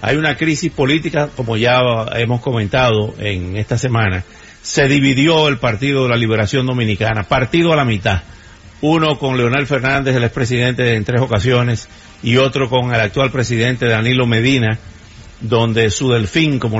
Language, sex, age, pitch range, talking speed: English, male, 50-69, 110-135 Hz, 155 wpm